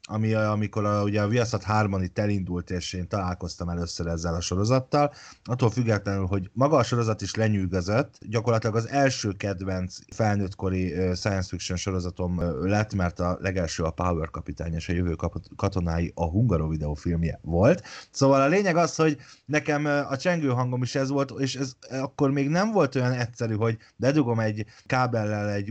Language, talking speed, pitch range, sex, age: Hungarian, 165 wpm, 95-125 Hz, male, 30-49